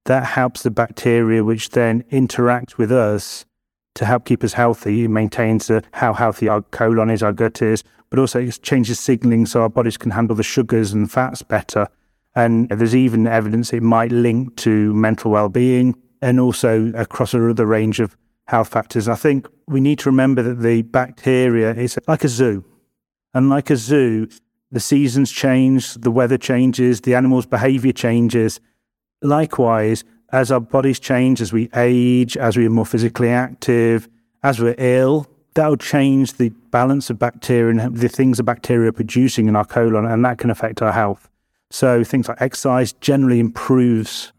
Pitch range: 115-130 Hz